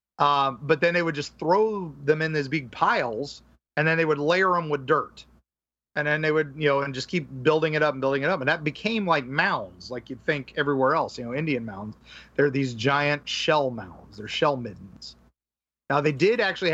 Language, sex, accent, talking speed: English, male, American, 225 wpm